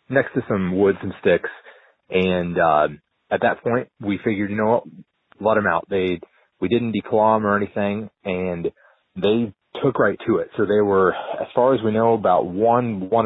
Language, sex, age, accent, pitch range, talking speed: German, male, 30-49, American, 95-115 Hz, 195 wpm